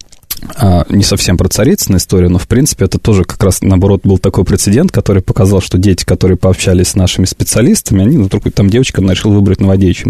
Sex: male